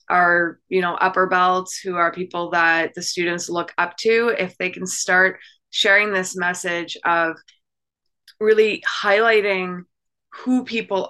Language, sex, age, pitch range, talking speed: English, female, 20-39, 170-195 Hz, 140 wpm